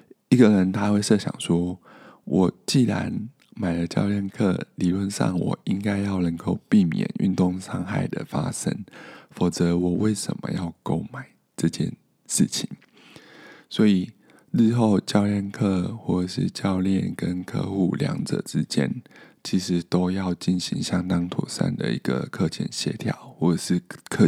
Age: 20-39